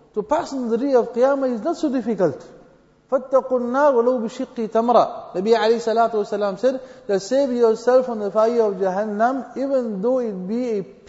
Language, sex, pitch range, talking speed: English, male, 205-255 Hz, 155 wpm